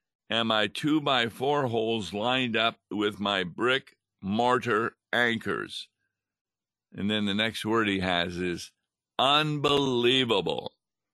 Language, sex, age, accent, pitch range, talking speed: English, male, 50-69, American, 105-130 Hz, 100 wpm